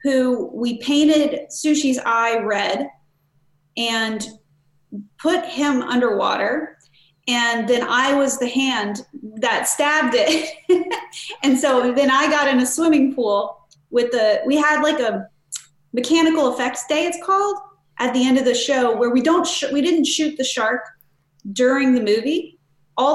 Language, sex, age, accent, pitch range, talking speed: English, female, 30-49, American, 220-285 Hz, 150 wpm